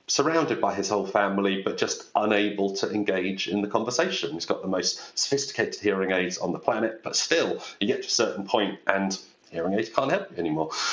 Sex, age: male, 40-59